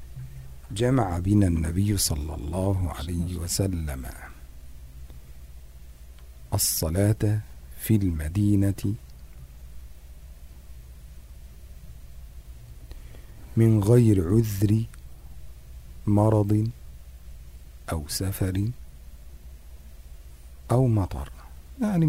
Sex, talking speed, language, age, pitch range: male, 50 wpm, Indonesian, 50-69, 65-100 Hz